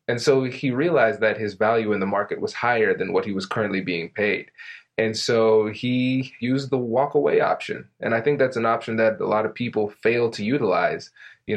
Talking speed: 220 wpm